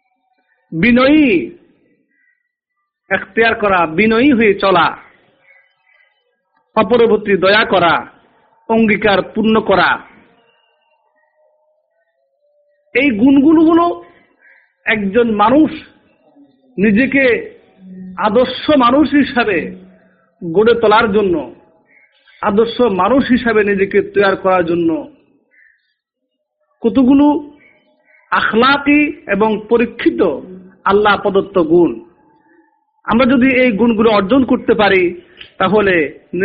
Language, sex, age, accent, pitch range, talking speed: Bengali, male, 50-69, native, 195-290 Hz, 70 wpm